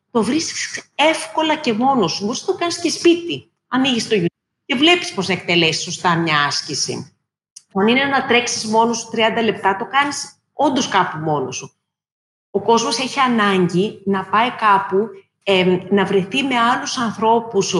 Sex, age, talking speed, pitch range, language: female, 30-49, 160 wpm, 185-245 Hz, Greek